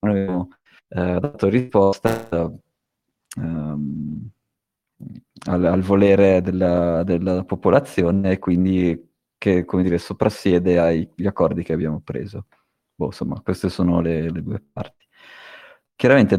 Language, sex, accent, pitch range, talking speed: Italian, male, native, 90-105 Hz, 105 wpm